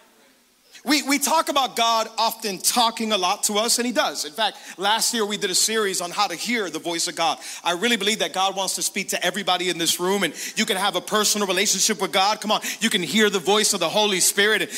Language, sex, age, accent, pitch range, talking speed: English, male, 40-59, American, 190-230 Hz, 255 wpm